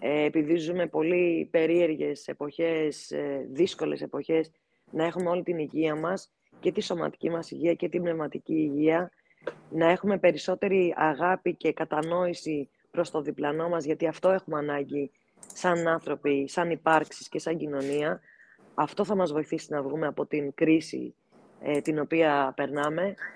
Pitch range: 150-175 Hz